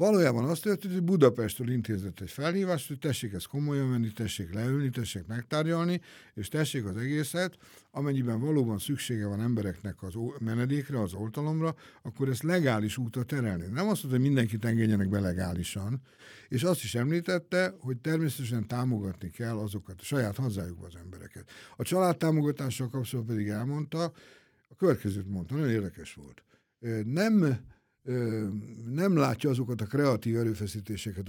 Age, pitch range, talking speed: 60-79, 105-145 Hz, 140 wpm